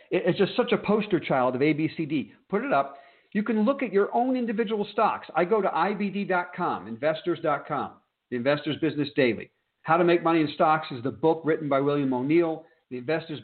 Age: 50-69